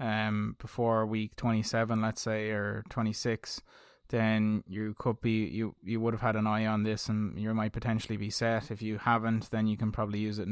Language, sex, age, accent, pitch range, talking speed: English, male, 20-39, Irish, 105-110 Hz, 205 wpm